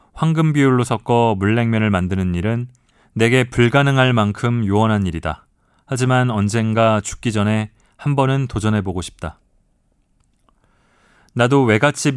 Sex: male